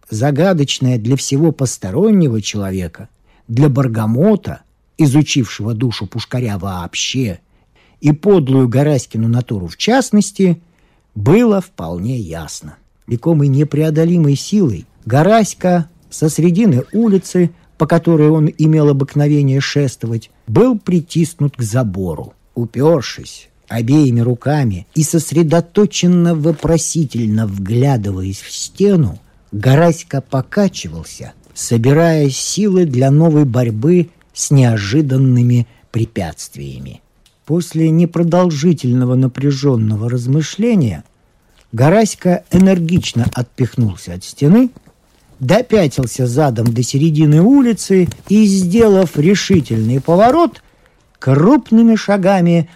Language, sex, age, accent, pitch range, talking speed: Russian, male, 50-69, native, 120-175 Hz, 85 wpm